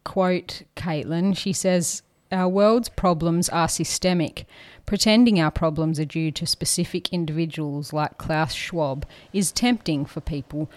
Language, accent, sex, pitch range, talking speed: English, Australian, female, 145-175 Hz, 135 wpm